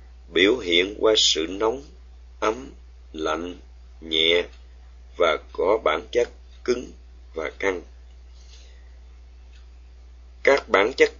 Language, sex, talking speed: Vietnamese, male, 95 wpm